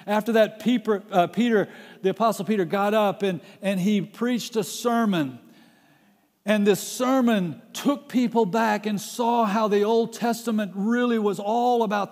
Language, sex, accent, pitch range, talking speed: English, male, American, 175-225 Hz, 160 wpm